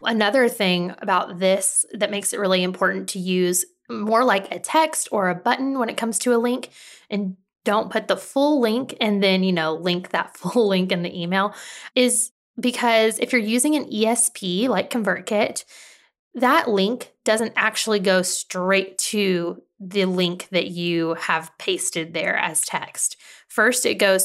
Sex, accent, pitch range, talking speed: female, American, 185-240 Hz, 170 wpm